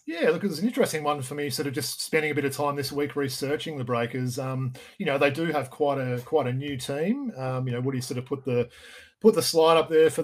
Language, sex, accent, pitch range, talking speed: English, male, Australian, 140-165 Hz, 280 wpm